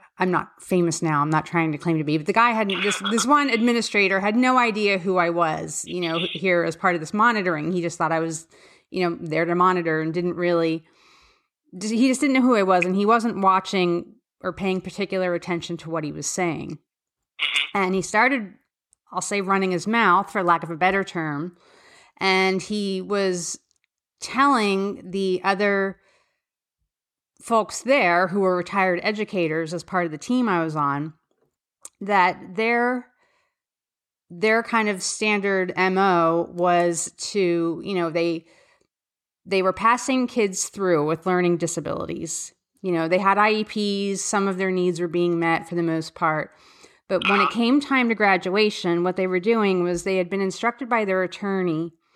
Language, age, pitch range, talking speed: English, 30-49, 170-205 Hz, 180 wpm